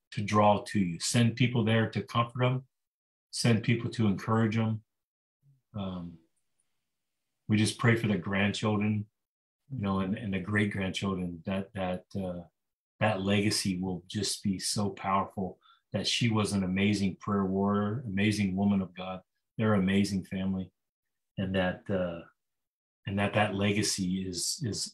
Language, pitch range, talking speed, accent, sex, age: English, 95-110 Hz, 145 wpm, American, male, 30-49